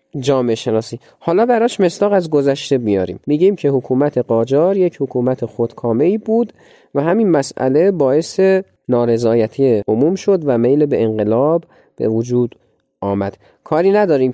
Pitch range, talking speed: 115-160 Hz, 135 wpm